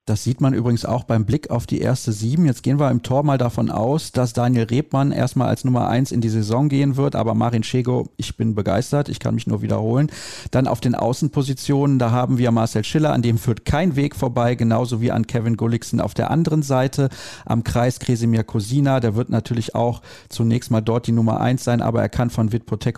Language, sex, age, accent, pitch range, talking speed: German, male, 40-59, German, 115-150 Hz, 225 wpm